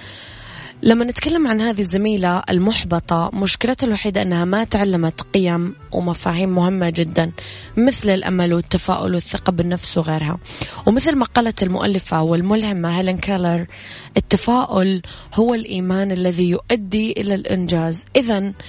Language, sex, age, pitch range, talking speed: Arabic, female, 20-39, 170-210 Hz, 115 wpm